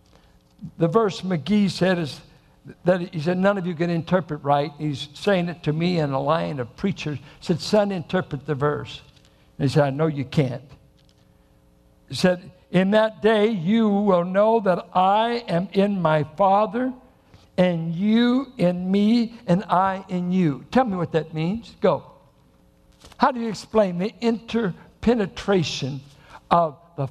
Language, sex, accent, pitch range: English, male, American, 155-235 Hz